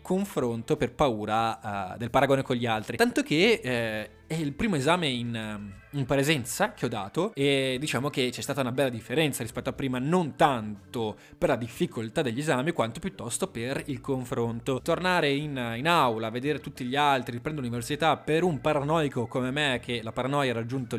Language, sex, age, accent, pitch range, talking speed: Italian, male, 20-39, native, 115-145 Hz, 185 wpm